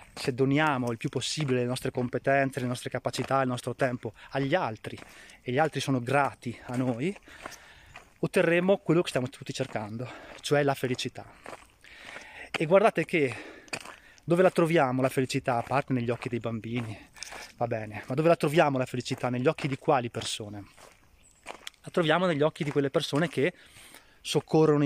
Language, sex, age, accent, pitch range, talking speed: Italian, male, 20-39, native, 125-145 Hz, 165 wpm